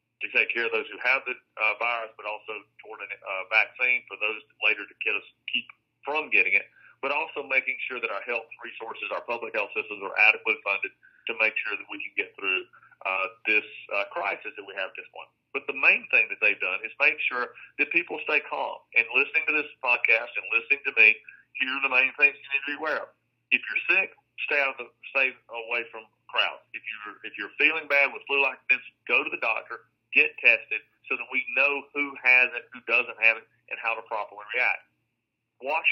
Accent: American